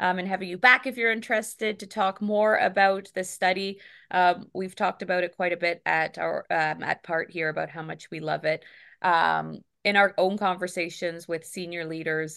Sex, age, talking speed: female, 20-39, 205 wpm